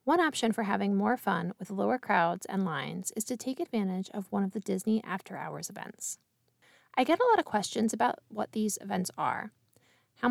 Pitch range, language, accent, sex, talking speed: 190-250 Hz, English, American, female, 205 wpm